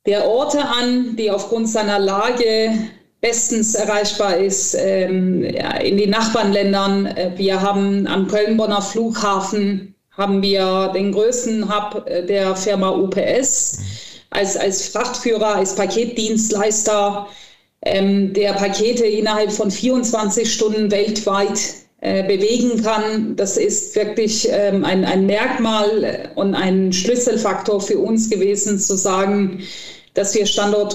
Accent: German